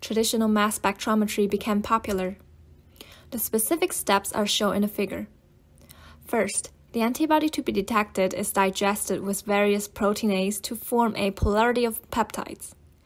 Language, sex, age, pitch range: English, female, 20-39, 205-235 Hz